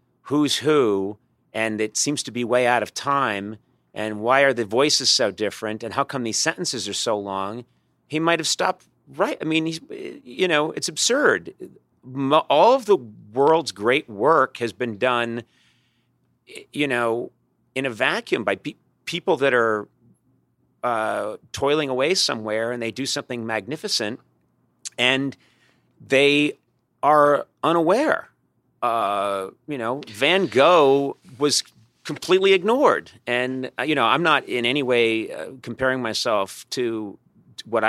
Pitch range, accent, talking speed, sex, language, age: 105-140 Hz, American, 145 wpm, male, English, 40-59